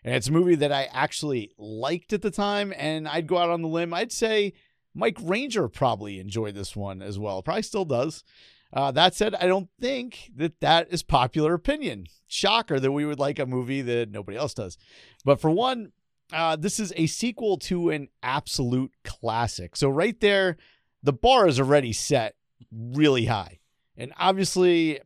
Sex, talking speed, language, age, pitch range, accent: male, 185 wpm, English, 40-59, 130-180 Hz, American